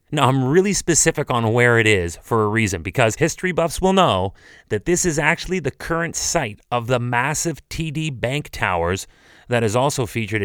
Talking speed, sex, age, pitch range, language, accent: 190 wpm, male, 30-49, 105-140 Hz, English, American